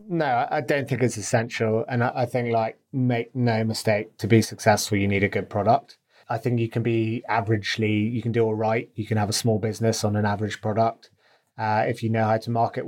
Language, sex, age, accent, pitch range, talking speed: English, male, 30-49, British, 110-125 Hz, 230 wpm